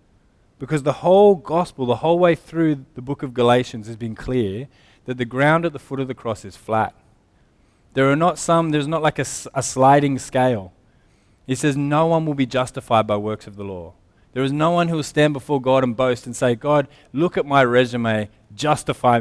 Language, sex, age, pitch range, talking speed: English, male, 20-39, 120-155 Hz, 210 wpm